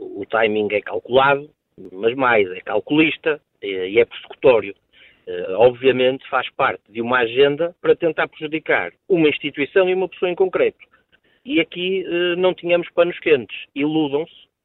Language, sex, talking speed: Portuguese, male, 140 wpm